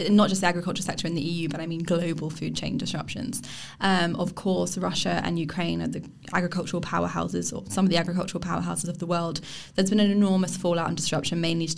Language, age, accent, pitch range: English, 10-29, British, 160-195 Hz